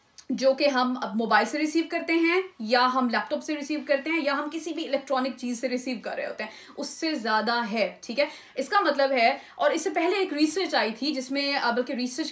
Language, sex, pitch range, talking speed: Urdu, female, 245-305 Hz, 255 wpm